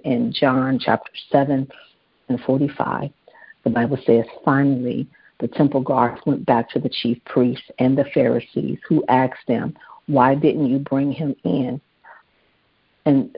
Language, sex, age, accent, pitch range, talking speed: English, female, 50-69, American, 135-155 Hz, 145 wpm